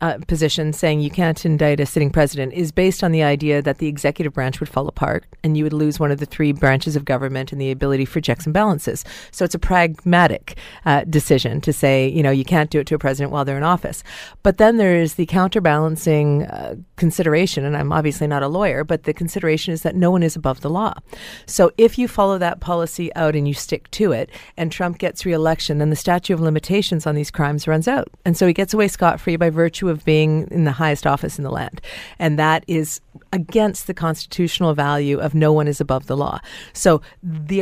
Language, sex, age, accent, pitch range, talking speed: English, female, 40-59, American, 150-175 Hz, 230 wpm